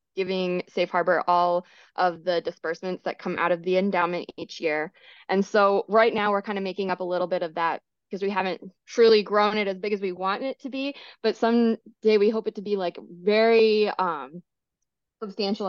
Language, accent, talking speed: English, American, 205 wpm